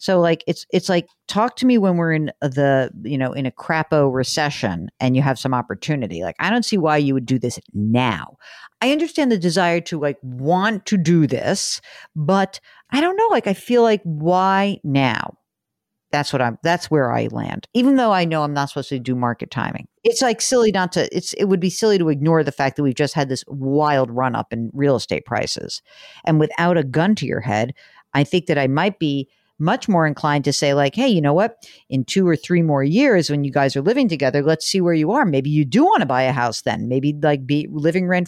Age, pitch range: 50-69, 140-190 Hz